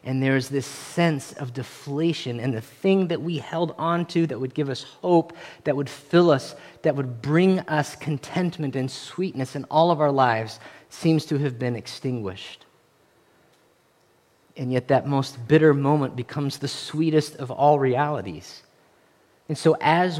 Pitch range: 135-170 Hz